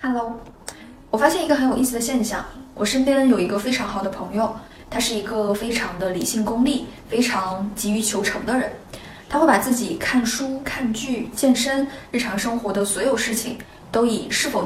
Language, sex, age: Chinese, female, 20-39